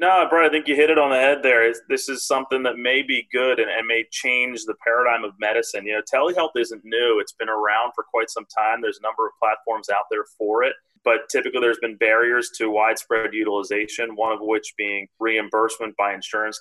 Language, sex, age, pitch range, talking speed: English, male, 30-49, 110-155 Hz, 225 wpm